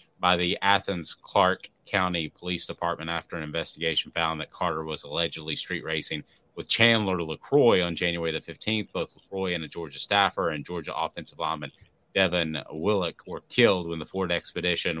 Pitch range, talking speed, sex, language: 80-95 Hz, 165 wpm, male, English